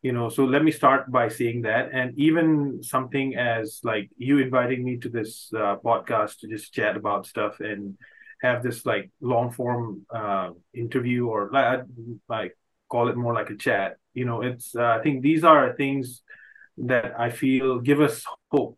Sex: male